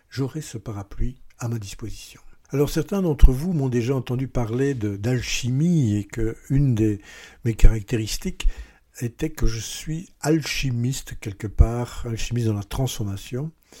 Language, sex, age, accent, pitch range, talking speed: French, male, 60-79, French, 115-155 Hz, 135 wpm